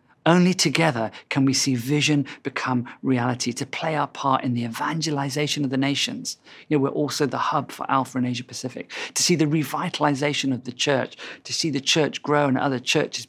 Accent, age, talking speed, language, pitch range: British, 40-59, 200 wpm, English, 125-165 Hz